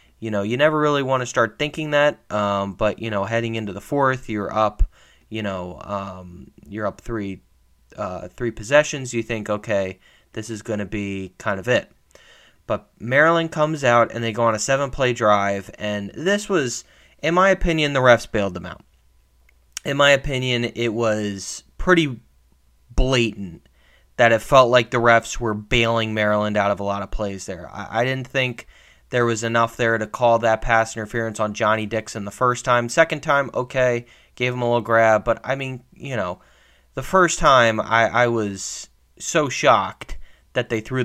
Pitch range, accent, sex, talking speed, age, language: 100-125 Hz, American, male, 185 wpm, 20-39, English